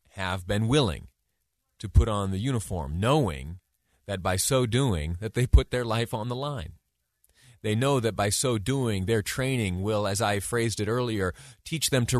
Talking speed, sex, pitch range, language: 185 wpm, male, 95-125 Hz, English